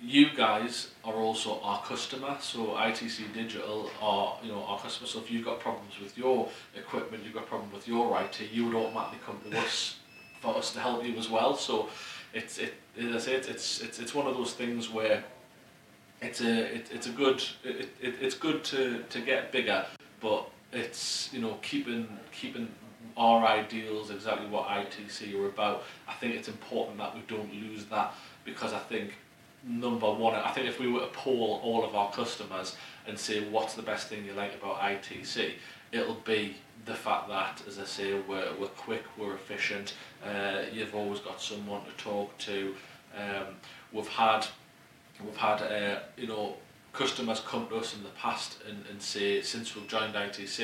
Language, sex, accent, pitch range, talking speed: English, male, British, 100-115 Hz, 190 wpm